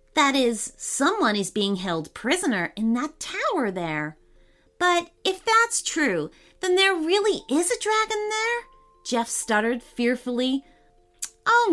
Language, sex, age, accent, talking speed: English, female, 30-49, American, 135 wpm